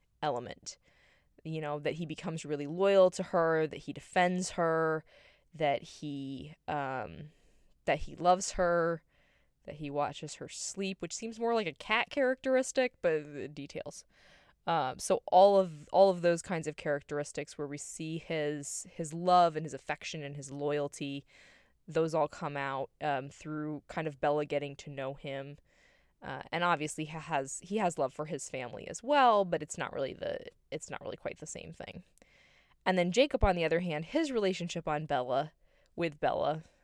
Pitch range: 145-175 Hz